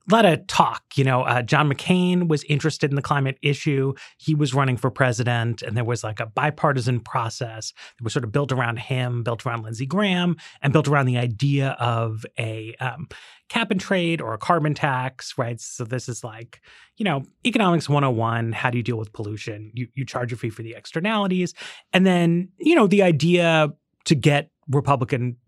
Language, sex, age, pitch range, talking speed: English, male, 30-49, 120-160 Hz, 200 wpm